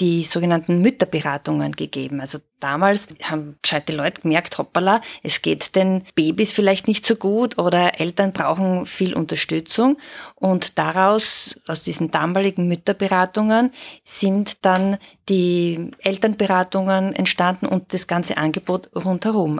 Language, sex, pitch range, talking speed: German, female, 165-200 Hz, 120 wpm